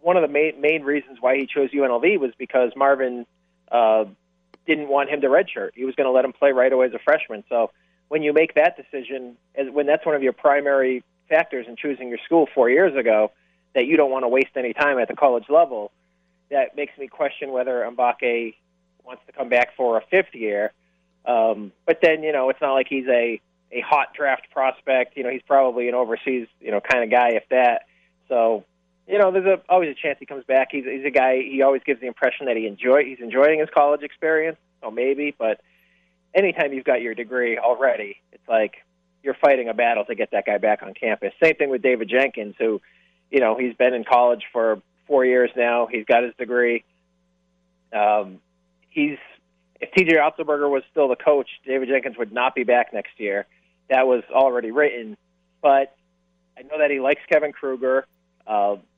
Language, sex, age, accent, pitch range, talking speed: English, male, 40-59, American, 105-140 Hz, 210 wpm